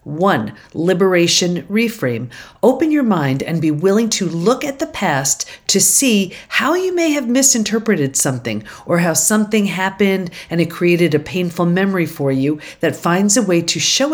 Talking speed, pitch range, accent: 170 wpm, 155-225 Hz, American